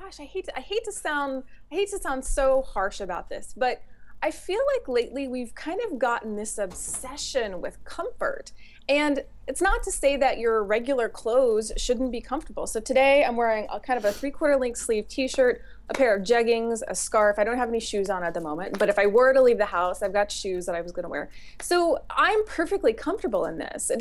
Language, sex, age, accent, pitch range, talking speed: English, female, 20-39, American, 220-310 Hz, 215 wpm